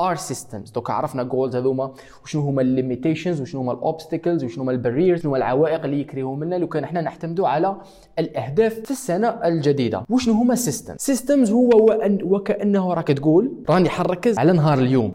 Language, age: Arabic, 20-39